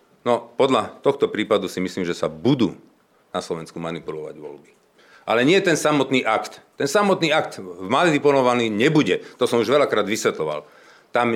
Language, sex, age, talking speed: Slovak, male, 40-59, 155 wpm